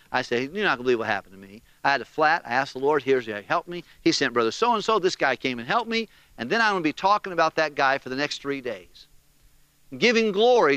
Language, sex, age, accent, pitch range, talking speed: English, male, 50-69, American, 120-185 Hz, 280 wpm